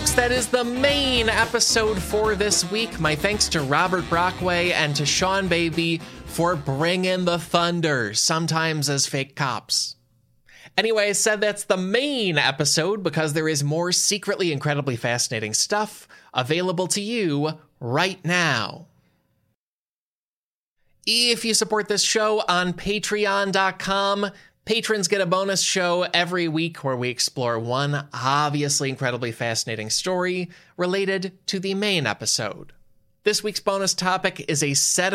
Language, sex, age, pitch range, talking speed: English, male, 20-39, 145-195 Hz, 135 wpm